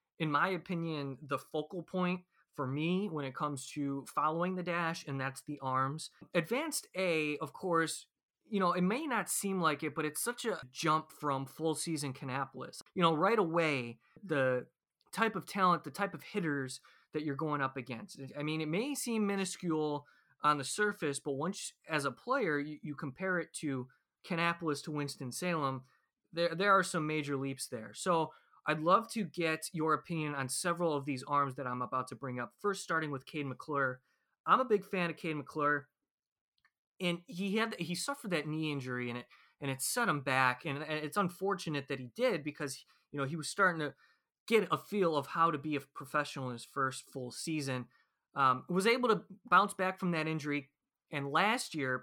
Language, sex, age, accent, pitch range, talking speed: English, male, 20-39, American, 140-180 Hz, 195 wpm